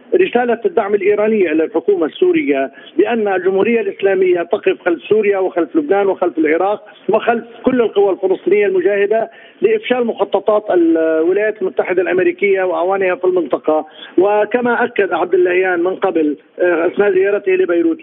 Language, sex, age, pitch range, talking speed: Arabic, male, 50-69, 180-235 Hz, 125 wpm